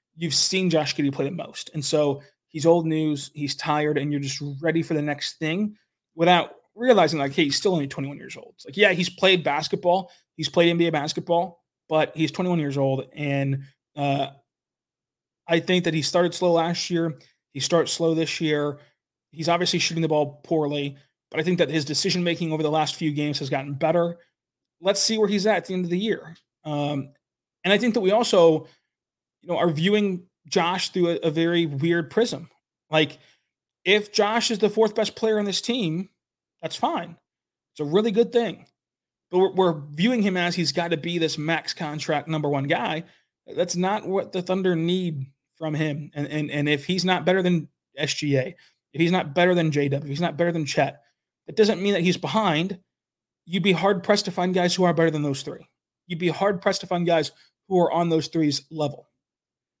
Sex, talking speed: male, 205 wpm